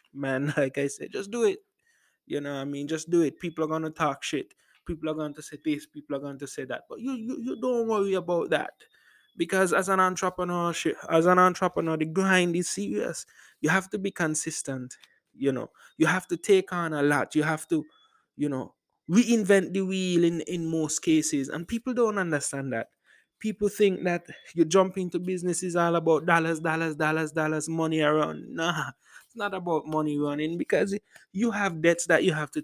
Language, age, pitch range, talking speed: English, 20-39, 150-185 Hz, 205 wpm